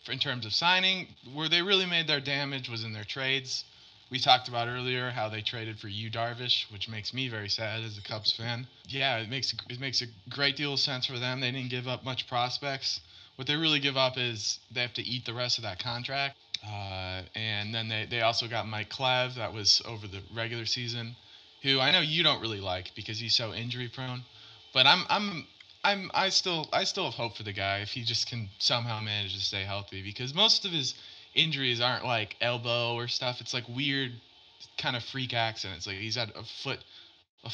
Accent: American